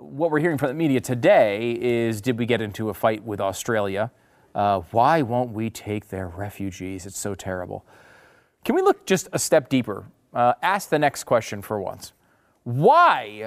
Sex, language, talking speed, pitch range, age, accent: male, English, 185 wpm, 105-145 Hz, 30-49, American